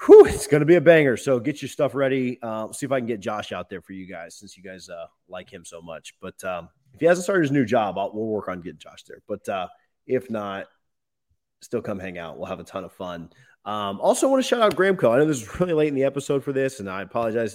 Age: 30-49